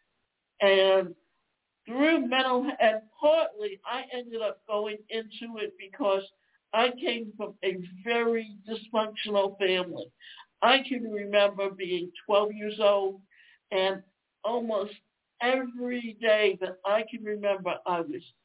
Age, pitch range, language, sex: 60-79, 195-255 Hz, English, male